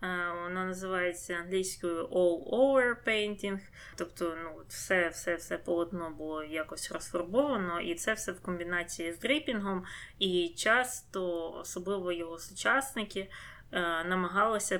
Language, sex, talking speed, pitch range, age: Ukrainian, female, 100 wpm, 170-195 Hz, 20-39